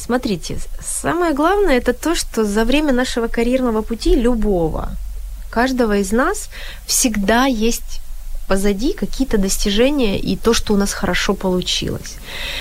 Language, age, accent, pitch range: Ukrainian, 30-49, native, 205-270 Hz